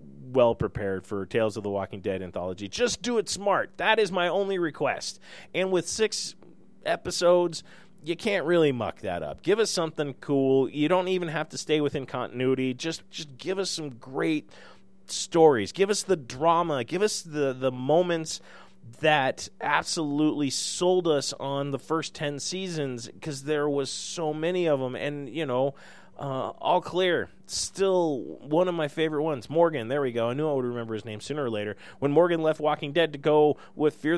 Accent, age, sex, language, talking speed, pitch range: American, 30-49, male, English, 190 wpm, 130-165 Hz